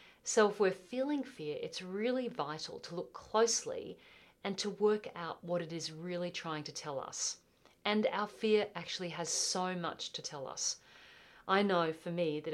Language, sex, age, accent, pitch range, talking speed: English, female, 40-59, Australian, 155-200 Hz, 180 wpm